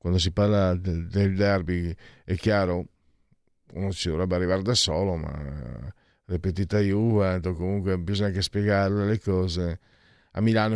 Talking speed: 145 wpm